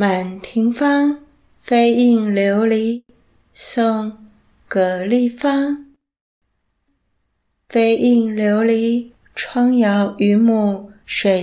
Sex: female